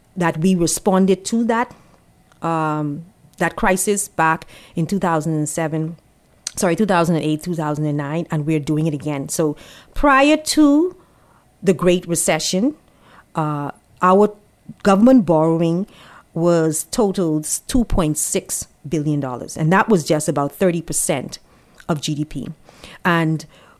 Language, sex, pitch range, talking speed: English, female, 155-200 Hz, 105 wpm